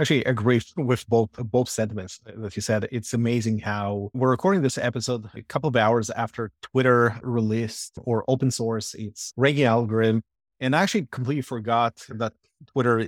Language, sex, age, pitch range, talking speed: English, male, 30-49, 115-130 Hz, 170 wpm